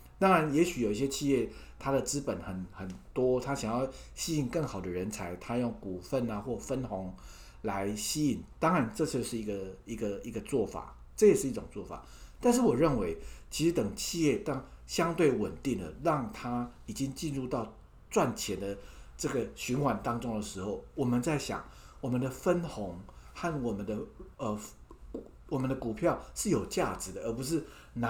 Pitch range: 100-145 Hz